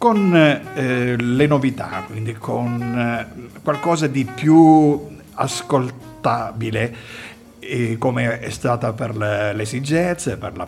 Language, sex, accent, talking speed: Italian, male, native, 110 wpm